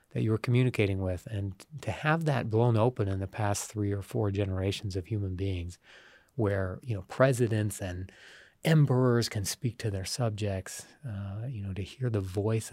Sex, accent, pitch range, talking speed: male, American, 100-120 Hz, 185 wpm